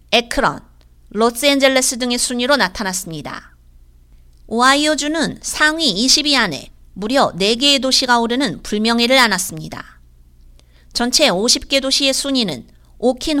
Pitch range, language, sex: 185-280 Hz, Korean, female